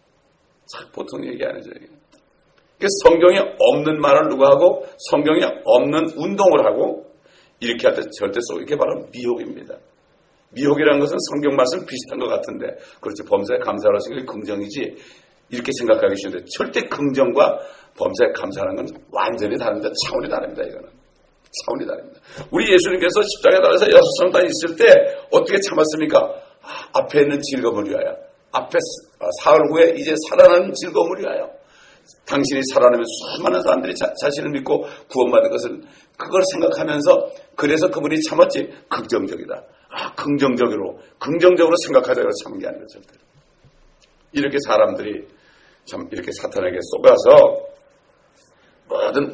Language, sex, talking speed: English, male, 120 wpm